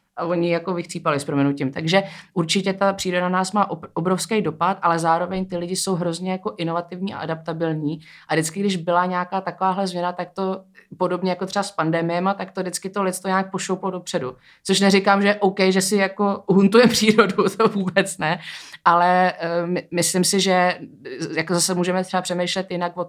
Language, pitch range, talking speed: Czech, 155-185 Hz, 180 wpm